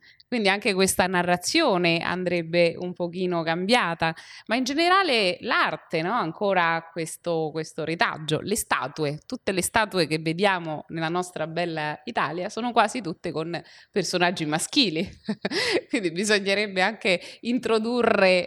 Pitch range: 170-210 Hz